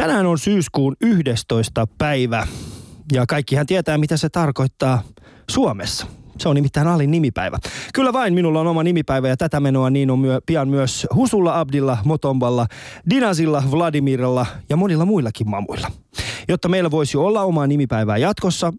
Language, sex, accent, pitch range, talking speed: Finnish, male, native, 125-175 Hz, 150 wpm